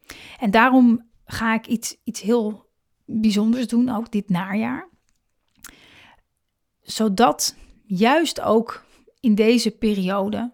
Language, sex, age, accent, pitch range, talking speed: Dutch, female, 30-49, Dutch, 200-235 Hz, 100 wpm